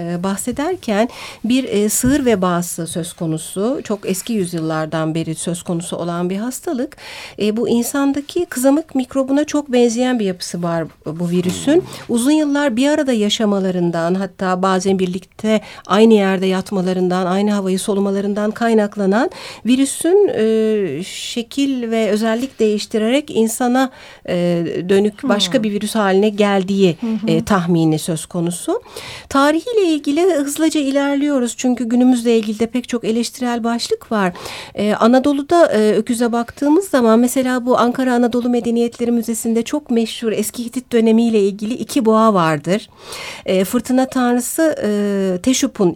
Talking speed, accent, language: 130 wpm, native, Turkish